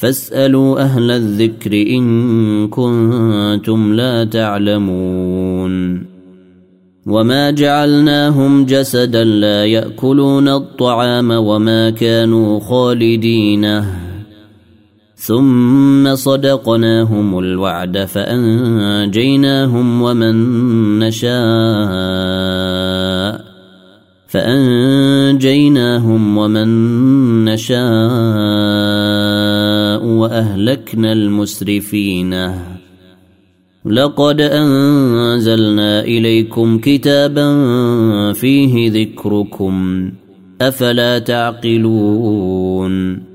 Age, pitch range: 30-49, 105-125 Hz